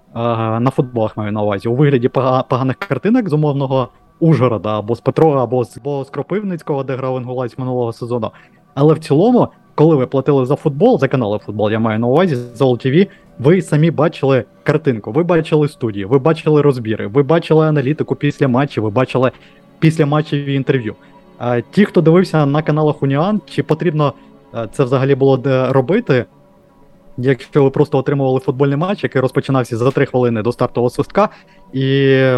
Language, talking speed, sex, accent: Ukrainian, 165 wpm, male, native